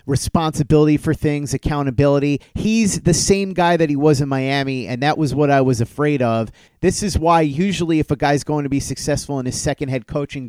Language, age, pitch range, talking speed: English, 30-49, 140-170 Hz, 210 wpm